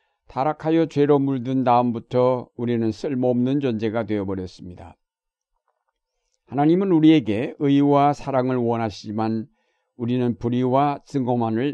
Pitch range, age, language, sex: 110-135 Hz, 60-79, Korean, male